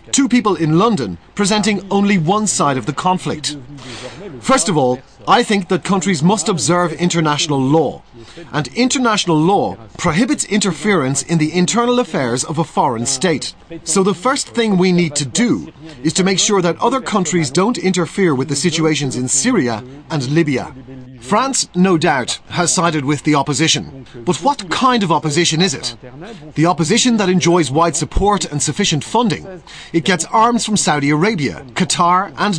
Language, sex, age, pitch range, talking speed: French, male, 30-49, 145-200 Hz, 170 wpm